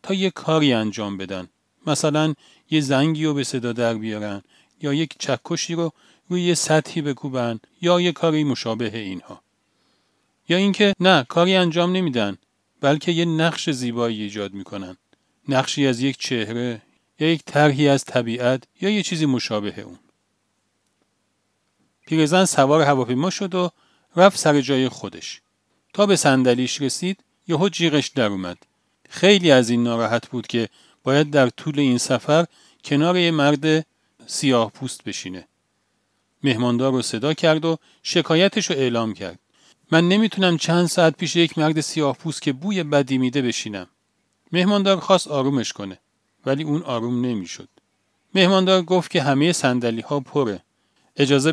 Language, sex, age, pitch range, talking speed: Persian, male, 40-59, 120-165 Hz, 145 wpm